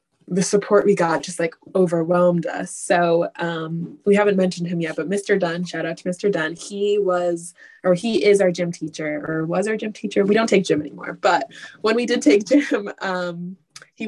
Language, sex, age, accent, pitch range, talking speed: English, female, 20-39, American, 170-205 Hz, 210 wpm